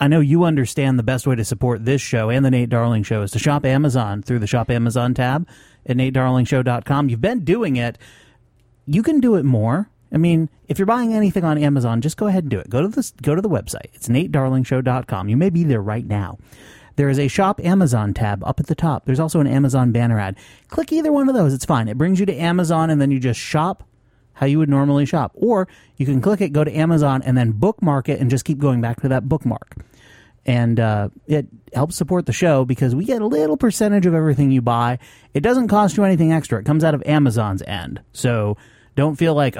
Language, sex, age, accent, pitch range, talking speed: English, male, 30-49, American, 120-155 Hz, 235 wpm